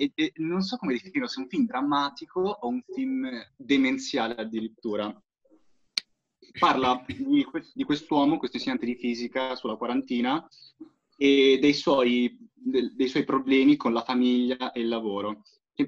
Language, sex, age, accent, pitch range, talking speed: Italian, male, 20-39, native, 115-180 Hz, 135 wpm